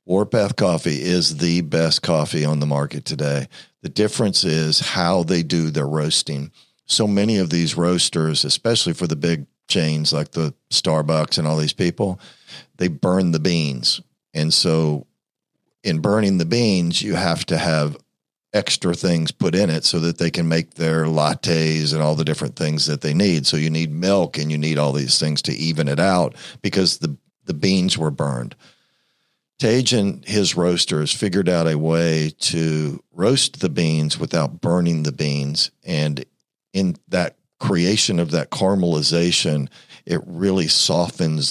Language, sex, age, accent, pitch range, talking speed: English, male, 50-69, American, 75-90 Hz, 165 wpm